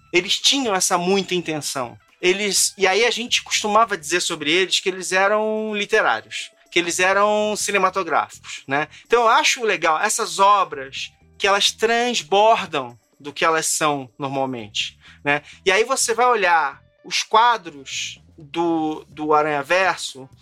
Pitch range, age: 155-225 Hz, 30-49